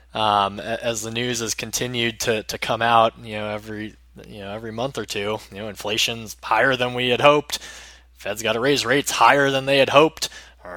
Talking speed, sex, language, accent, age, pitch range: 210 wpm, male, English, American, 20-39, 105-145 Hz